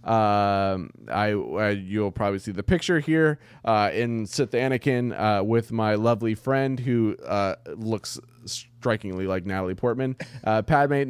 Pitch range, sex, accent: 105-130 Hz, male, American